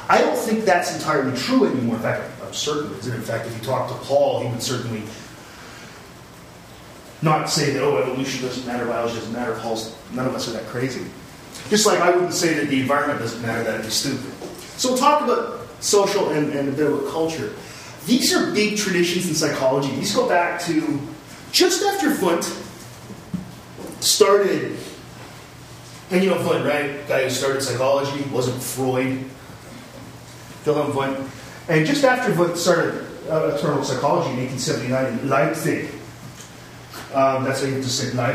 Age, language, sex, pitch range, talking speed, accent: 30-49, English, male, 130-195 Hz, 180 wpm, American